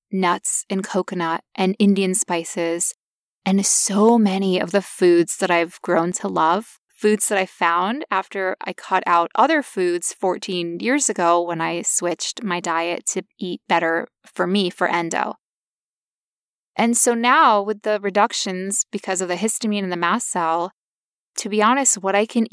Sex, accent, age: female, American, 20-39